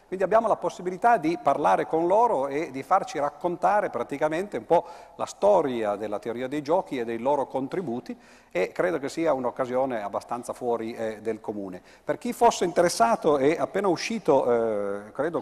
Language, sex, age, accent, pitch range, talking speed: Italian, male, 40-59, native, 110-150 Hz, 170 wpm